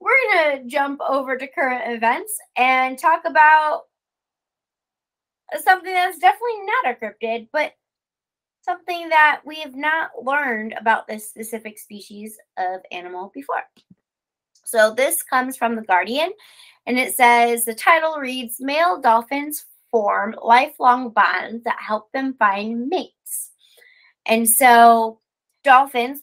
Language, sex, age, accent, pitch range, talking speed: English, female, 20-39, American, 220-285 Hz, 125 wpm